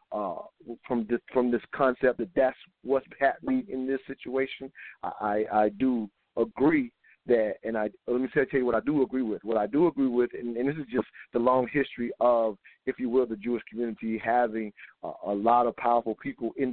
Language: English